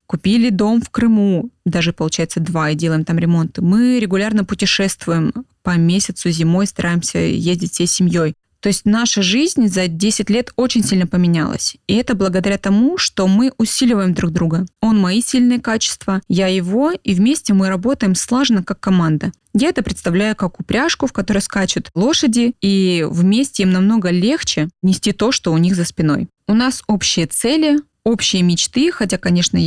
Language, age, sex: Russian, 20-39, female